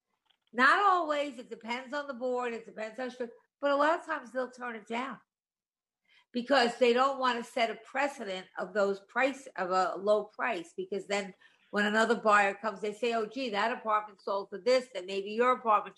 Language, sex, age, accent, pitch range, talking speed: English, female, 50-69, American, 205-260 Hz, 205 wpm